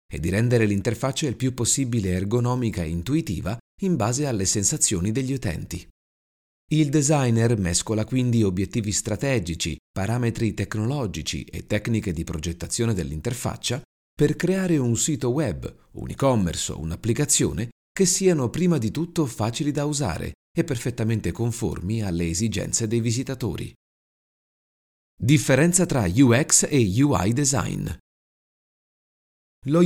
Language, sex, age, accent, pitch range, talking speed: Italian, male, 30-49, native, 90-135 Hz, 120 wpm